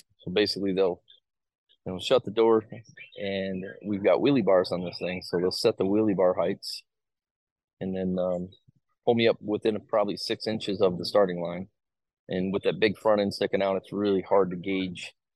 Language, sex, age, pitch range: English, male, 30-49, 90-105 Hz